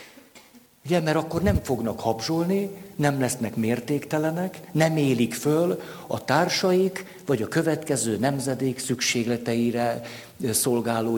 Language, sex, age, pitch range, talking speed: Hungarian, male, 60-79, 115-165 Hz, 105 wpm